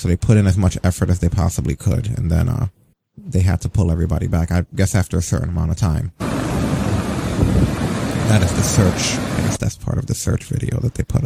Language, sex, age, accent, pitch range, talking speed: English, male, 30-49, American, 90-115 Hz, 230 wpm